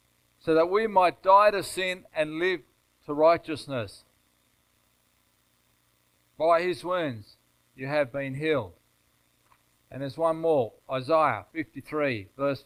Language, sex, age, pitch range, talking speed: English, male, 50-69, 115-170 Hz, 120 wpm